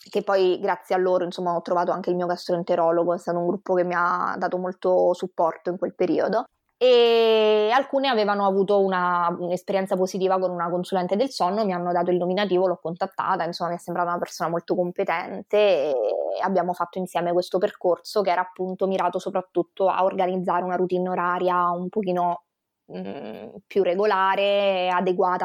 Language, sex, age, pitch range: Italian, female, 20-39, 175-195 Hz